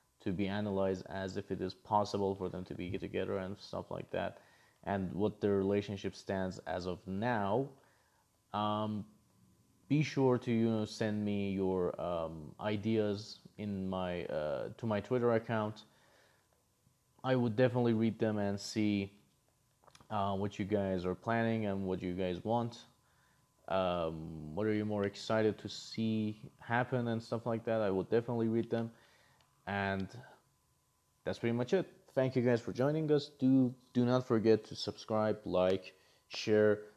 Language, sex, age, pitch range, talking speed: English, male, 30-49, 100-120 Hz, 160 wpm